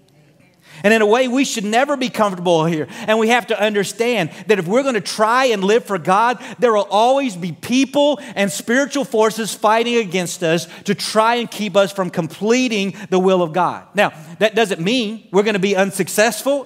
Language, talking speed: English, 200 wpm